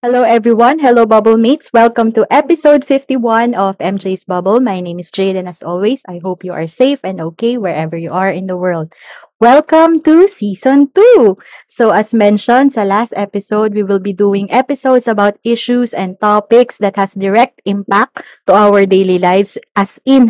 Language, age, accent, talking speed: Filipino, 20-39, native, 175 wpm